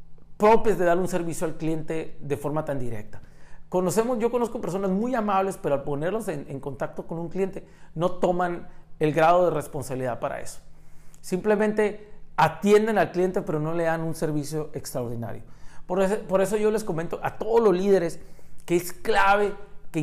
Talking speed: 175 wpm